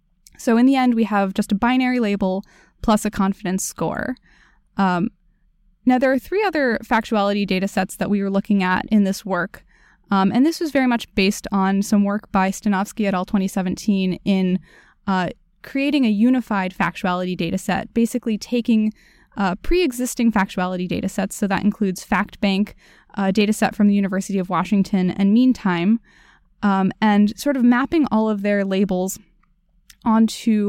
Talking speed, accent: 165 wpm, American